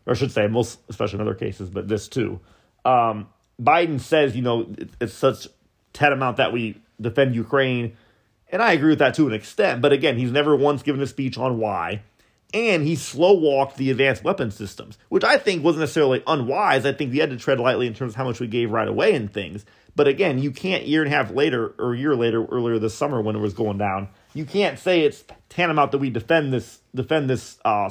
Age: 30-49